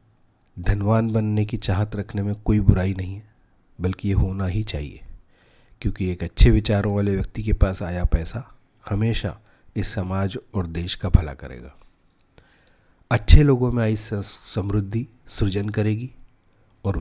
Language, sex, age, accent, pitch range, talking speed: Hindi, male, 40-59, native, 90-110 Hz, 145 wpm